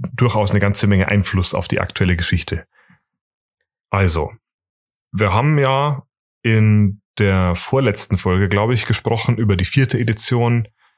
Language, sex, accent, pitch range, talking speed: German, male, German, 100-120 Hz, 130 wpm